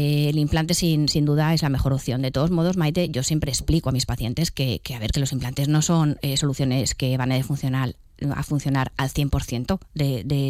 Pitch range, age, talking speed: 135-165 Hz, 20-39, 230 wpm